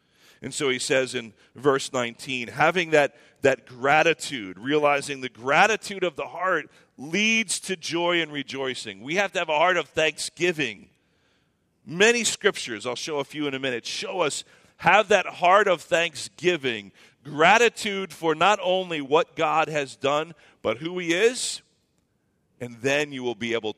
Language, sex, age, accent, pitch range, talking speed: English, male, 40-59, American, 110-150 Hz, 160 wpm